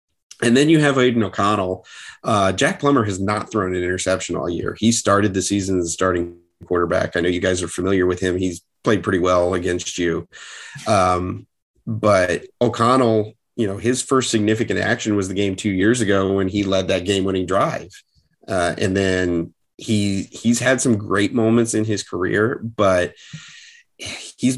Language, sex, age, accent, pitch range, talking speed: English, male, 30-49, American, 95-115 Hz, 180 wpm